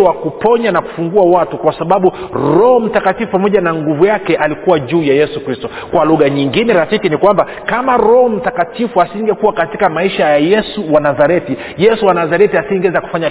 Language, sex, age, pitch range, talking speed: Swahili, male, 40-59, 150-205 Hz, 170 wpm